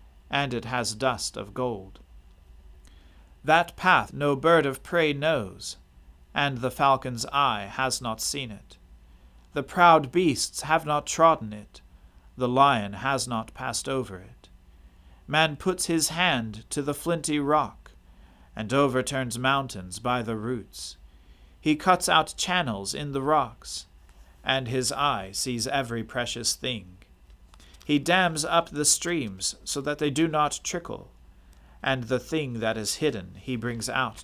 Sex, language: male, English